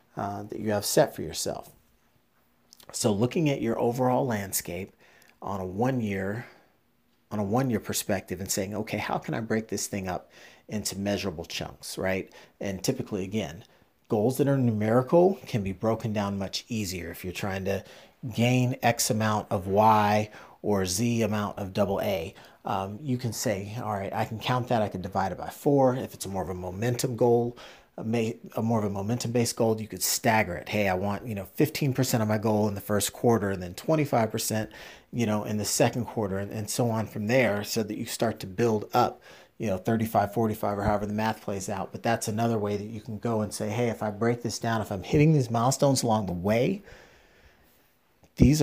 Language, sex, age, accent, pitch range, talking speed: English, male, 40-59, American, 100-120 Hz, 205 wpm